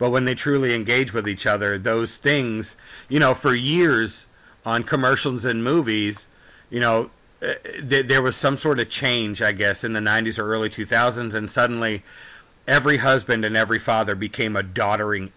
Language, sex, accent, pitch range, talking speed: English, male, American, 110-135 Hz, 175 wpm